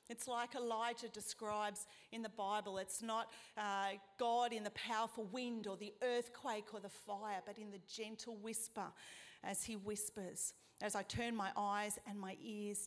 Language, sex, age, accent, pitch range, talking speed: English, female, 40-59, Australian, 200-240 Hz, 175 wpm